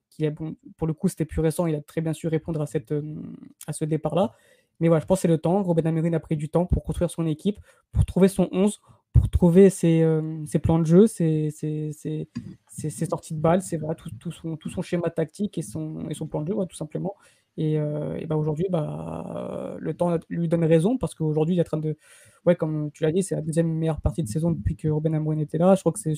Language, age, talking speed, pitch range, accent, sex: French, 20-39, 275 wpm, 155-170 Hz, French, female